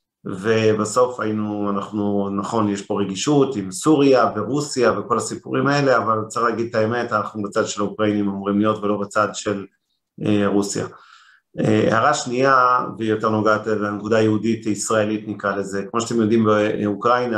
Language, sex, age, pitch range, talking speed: Hebrew, male, 40-59, 105-115 Hz, 145 wpm